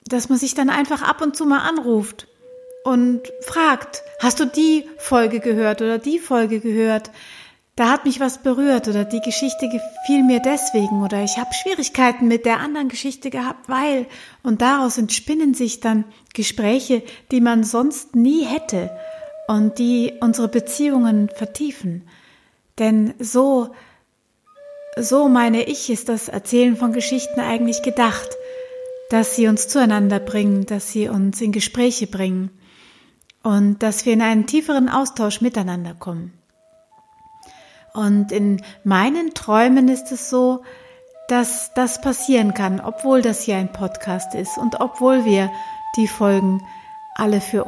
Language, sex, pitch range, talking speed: German, female, 215-285 Hz, 145 wpm